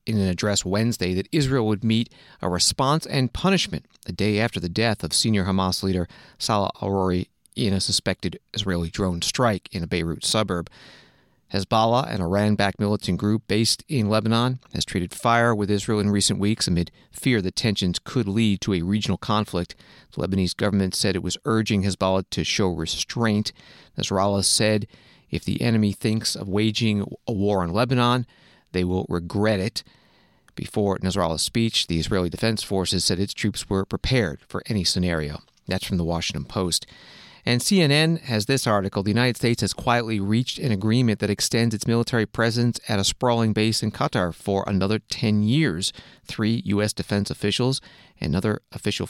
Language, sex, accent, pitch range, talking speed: English, male, American, 95-115 Hz, 170 wpm